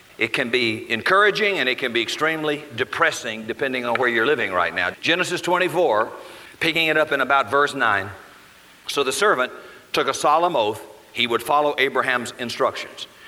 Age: 50-69